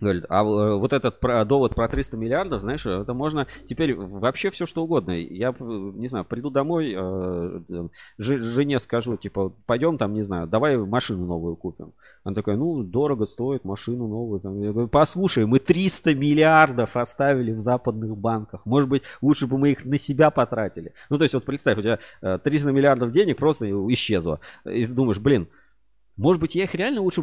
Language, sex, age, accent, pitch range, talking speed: Russian, male, 30-49, native, 105-145 Hz, 175 wpm